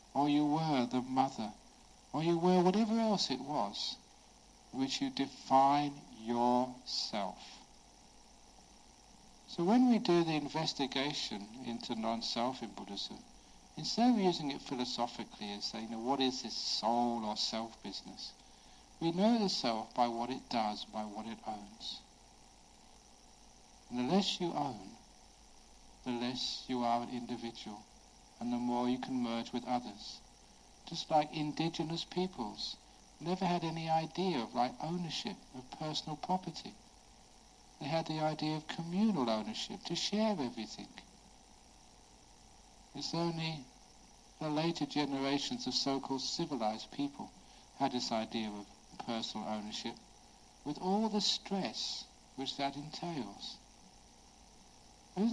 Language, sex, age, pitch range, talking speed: English, male, 60-79, 120-170 Hz, 130 wpm